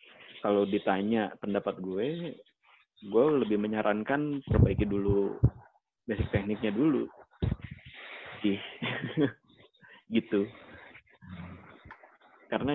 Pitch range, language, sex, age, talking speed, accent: 100-120 Hz, Indonesian, male, 20-39, 65 wpm, native